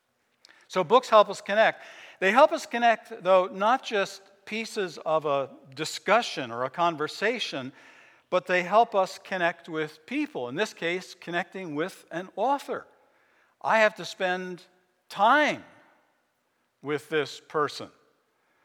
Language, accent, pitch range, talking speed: English, American, 135-200 Hz, 130 wpm